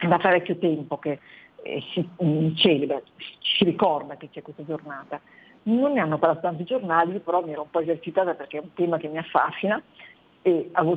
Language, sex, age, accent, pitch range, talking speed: Italian, female, 50-69, native, 155-195 Hz, 185 wpm